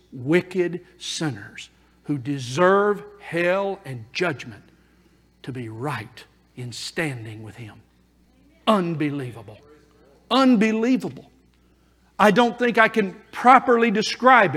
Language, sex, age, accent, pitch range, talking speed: English, male, 50-69, American, 165-215 Hz, 95 wpm